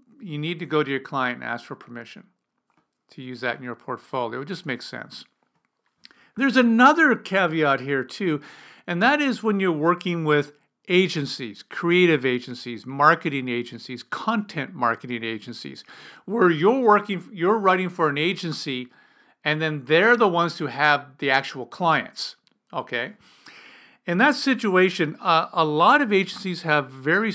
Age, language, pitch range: 50-69, English, 140-195 Hz